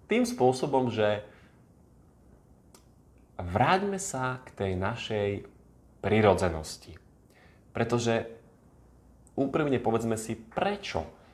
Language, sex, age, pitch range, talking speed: Slovak, male, 30-49, 95-125 Hz, 75 wpm